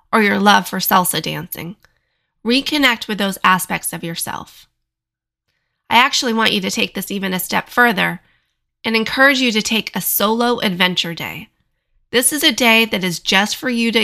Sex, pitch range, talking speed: female, 190-235 Hz, 180 wpm